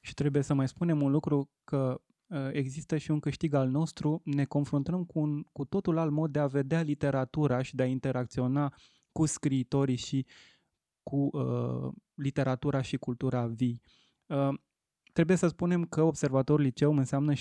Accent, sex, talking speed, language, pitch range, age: native, male, 160 wpm, Romanian, 130-150 Hz, 20-39